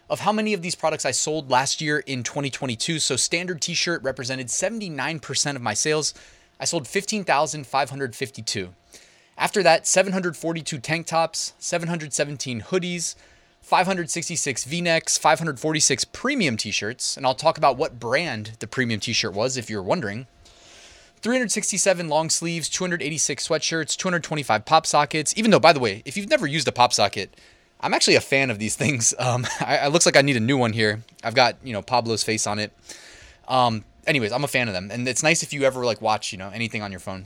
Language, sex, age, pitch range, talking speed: English, male, 20-39, 125-165 Hz, 190 wpm